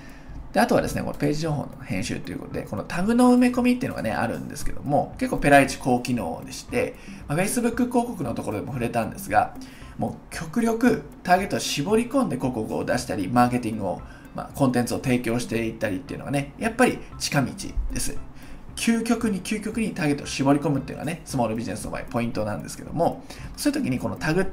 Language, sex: Japanese, male